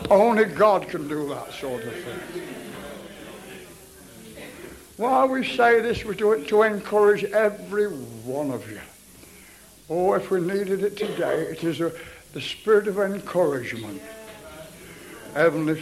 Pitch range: 165-225 Hz